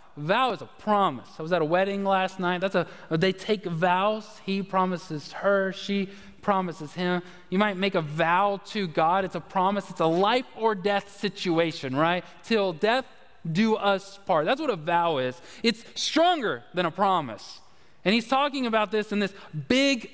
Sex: male